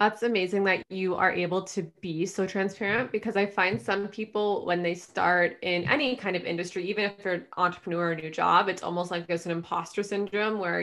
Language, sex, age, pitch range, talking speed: English, female, 20-39, 175-220 Hz, 220 wpm